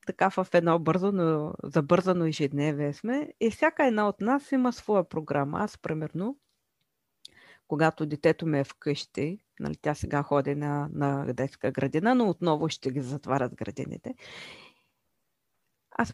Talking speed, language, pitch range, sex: 140 wpm, Bulgarian, 150-225 Hz, female